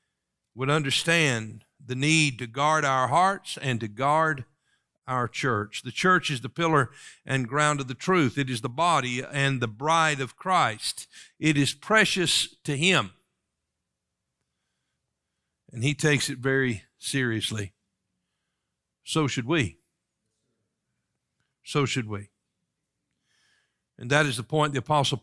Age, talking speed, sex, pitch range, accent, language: 50-69, 135 wpm, male, 135-175 Hz, American, English